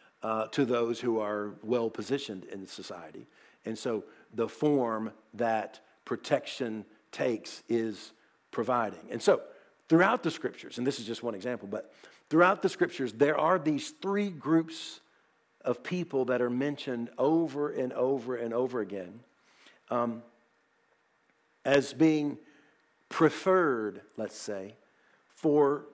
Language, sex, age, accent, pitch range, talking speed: English, male, 50-69, American, 120-155 Hz, 130 wpm